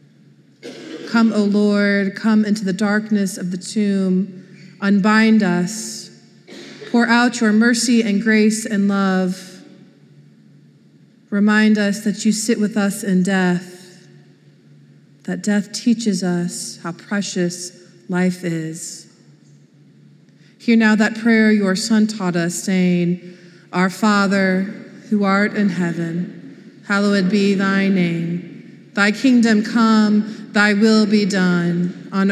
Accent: American